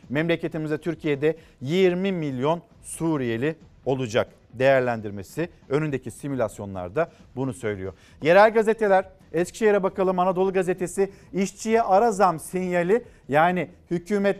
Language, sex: Turkish, male